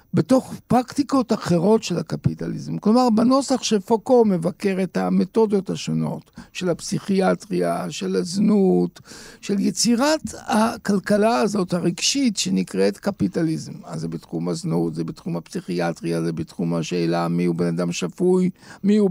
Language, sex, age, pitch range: Hebrew, male, 60-79, 160-225 Hz